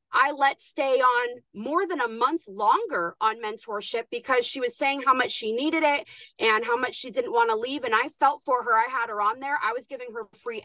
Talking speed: 240 wpm